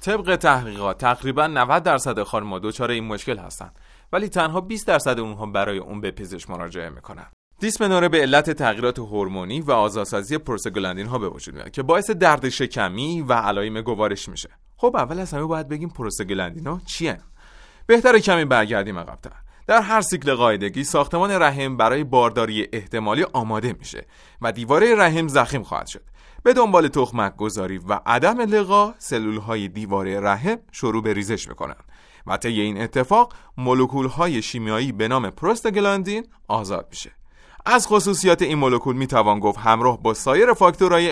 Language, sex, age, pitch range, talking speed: Persian, male, 30-49, 105-170 Hz, 155 wpm